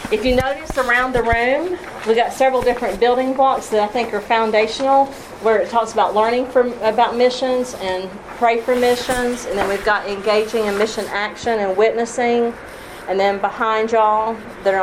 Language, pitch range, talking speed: English, 200-245 Hz, 180 wpm